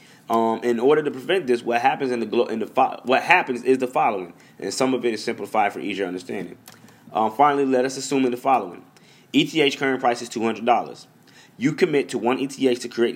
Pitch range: 115-140 Hz